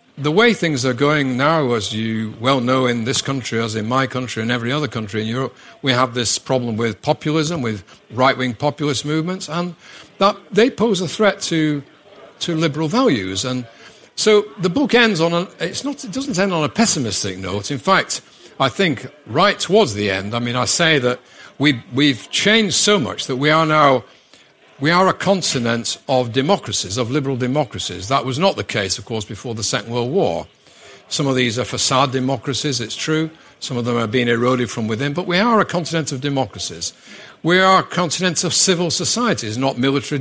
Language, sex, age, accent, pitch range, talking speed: Danish, male, 50-69, British, 120-170 Hz, 200 wpm